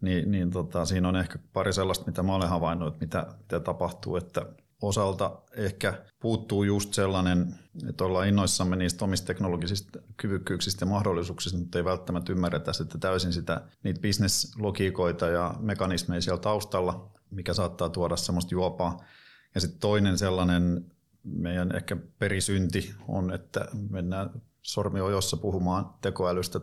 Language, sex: Finnish, male